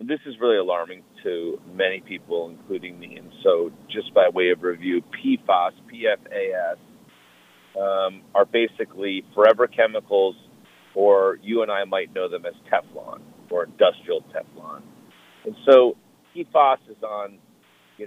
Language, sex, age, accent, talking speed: English, male, 40-59, American, 140 wpm